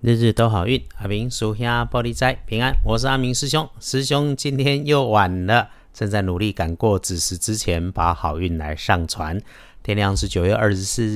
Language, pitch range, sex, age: Chinese, 90-120 Hz, male, 50-69